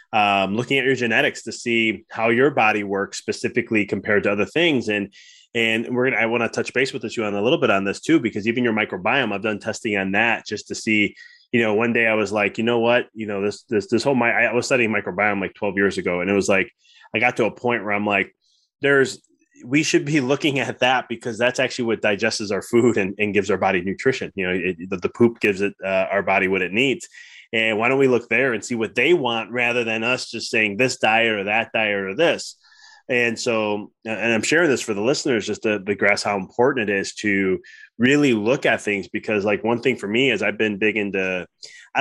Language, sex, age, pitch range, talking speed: English, male, 20-39, 105-120 Hz, 250 wpm